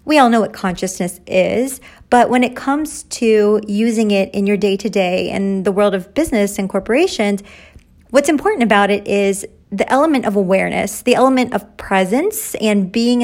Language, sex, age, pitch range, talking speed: English, female, 40-59, 200-250 Hz, 170 wpm